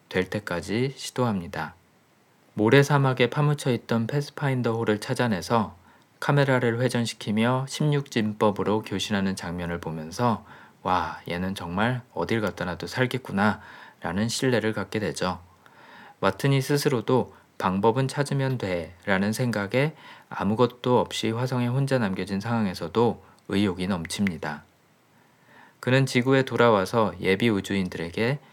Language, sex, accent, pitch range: Korean, male, native, 95-125 Hz